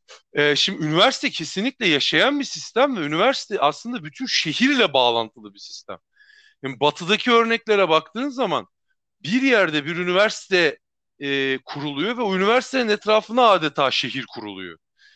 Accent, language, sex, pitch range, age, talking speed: native, Turkish, male, 160-220 Hz, 40-59, 125 wpm